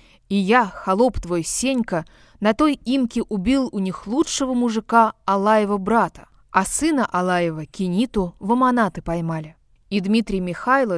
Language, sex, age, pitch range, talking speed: Russian, female, 20-39, 185-240 Hz, 135 wpm